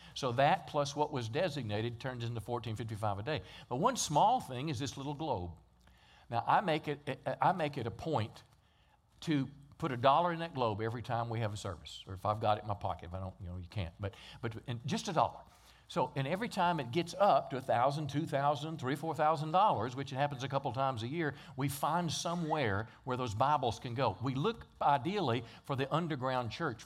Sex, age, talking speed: male, 50-69, 215 wpm